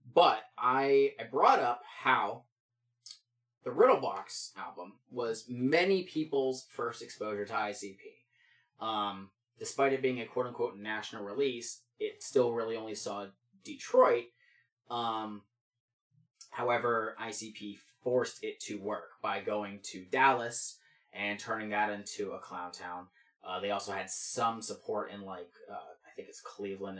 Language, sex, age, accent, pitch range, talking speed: English, male, 20-39, American, 105-135 Hz, 150 wpm